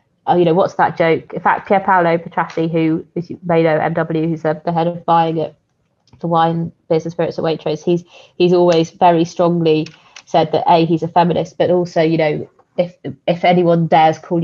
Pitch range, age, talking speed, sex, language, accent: 160-175 Hz, 20-39, 210 wpm, female, English, British